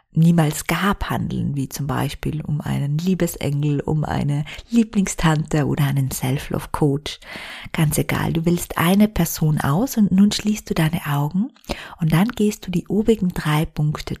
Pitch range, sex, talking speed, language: 150-180 Hz, female, 150 wpm, German